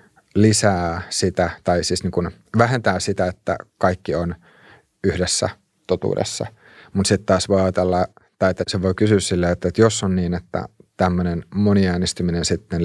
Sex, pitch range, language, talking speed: male, 90-100 Hz, Finnish, 150 wpm